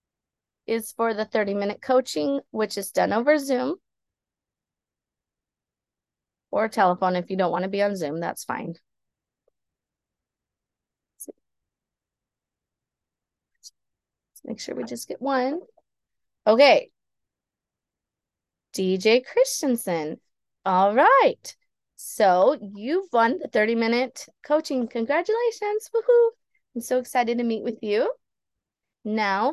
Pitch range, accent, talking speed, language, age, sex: 205-305 Hz, American, 105 wpm, English, 30-49, female